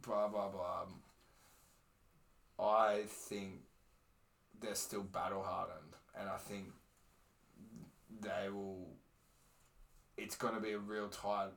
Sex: male